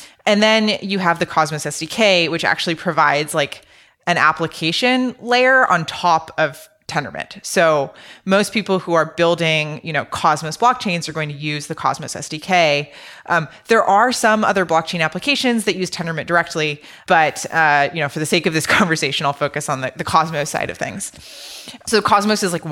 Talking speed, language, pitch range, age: 180 wpm, English, 155-190 Hz, 20-39